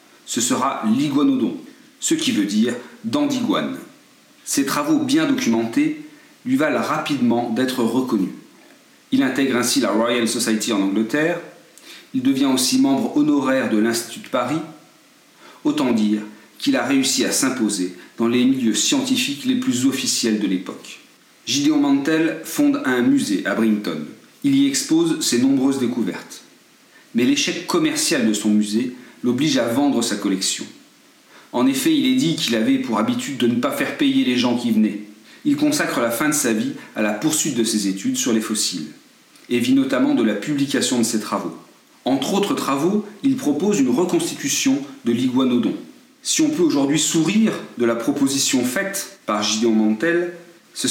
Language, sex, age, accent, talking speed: French, male, 40-59, French, 165 wpm